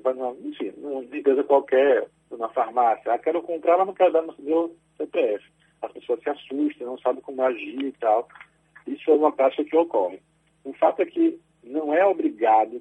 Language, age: Portuguese, 50-69